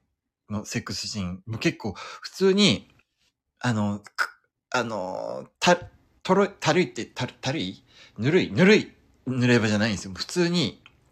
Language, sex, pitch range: Japanese, male, 100-155 Hz